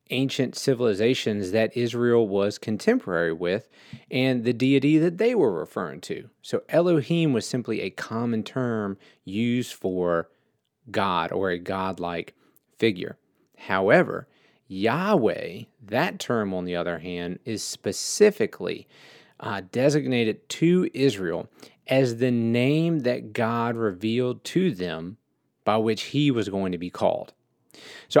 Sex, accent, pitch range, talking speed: male, American, 100-140 Hz, 130 wpm